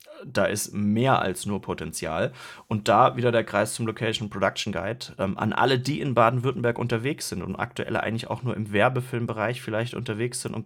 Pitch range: 100-120 Hz